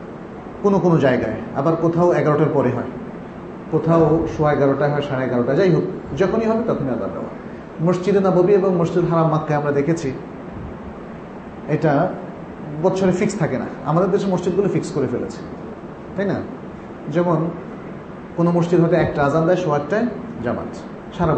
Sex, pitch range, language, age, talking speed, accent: male, 155-200 Hz, Bengali, 40-59, 50 wpm, native